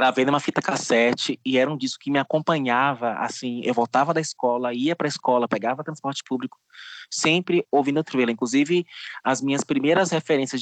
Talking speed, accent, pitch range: 185 wpm, Brazilian, 125-155 Hz